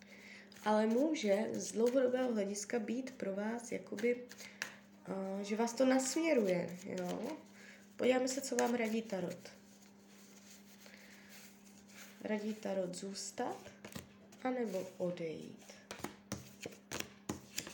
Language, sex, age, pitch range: Czech, female, 20-39, 205-250 Hz